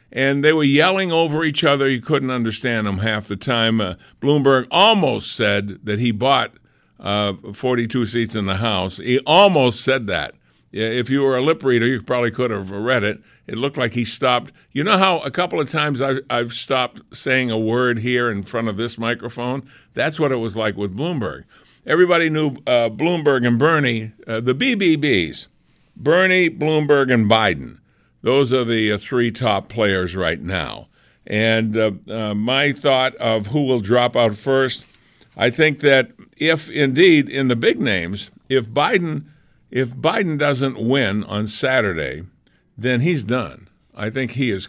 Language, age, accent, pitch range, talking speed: English, 60-79, American, 110-145 Hz, 175 wpm